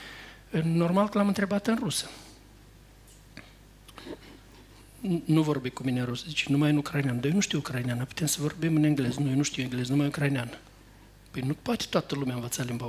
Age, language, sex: 50-69, Romanian, male